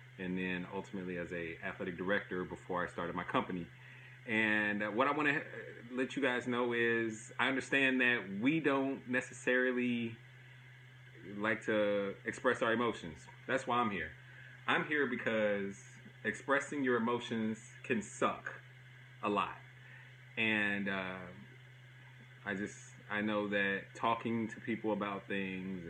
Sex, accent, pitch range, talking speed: male, American, 95-125 Hz, 135 wpm